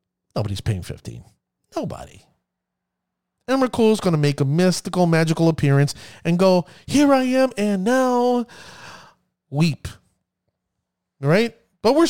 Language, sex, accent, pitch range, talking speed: English, male, American, 130-205 Hz, 120 wpm